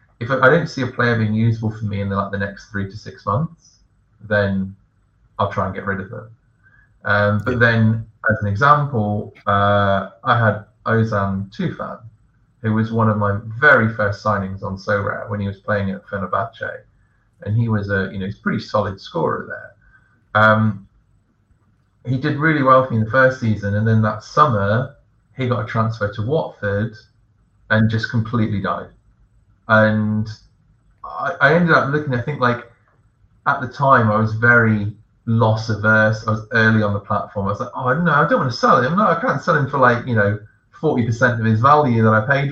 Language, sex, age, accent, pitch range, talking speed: English, male, 30-49, British, 105-120 Hz, 200 wpm